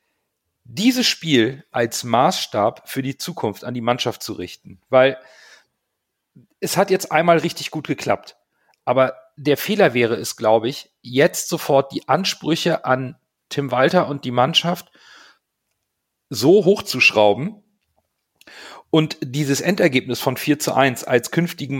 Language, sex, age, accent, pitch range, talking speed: German, male, 40-59, German, 130-175 Hz, 130 wpm